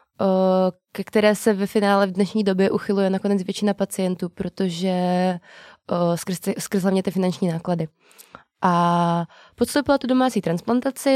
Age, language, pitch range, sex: 20-39, Czech, 185-210 Hz, female